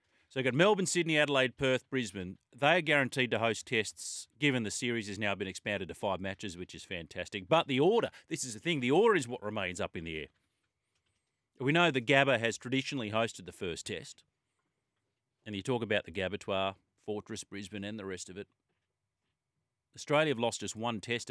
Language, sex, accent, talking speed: English, male, Australian, 200 wpm